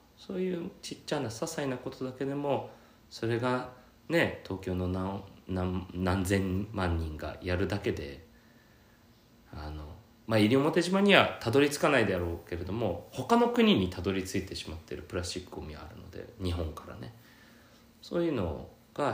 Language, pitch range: Japanese, 90-115 Hz